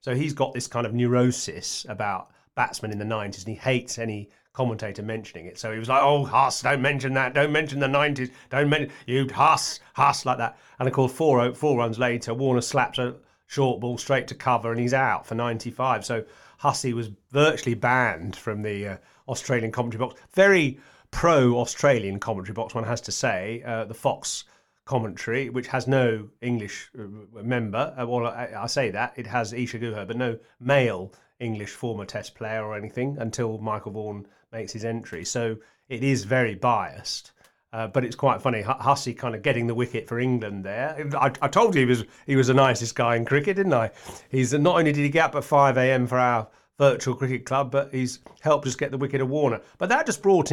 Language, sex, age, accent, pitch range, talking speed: English, male, 40-59, British, 115-135 Hz, 210 wpm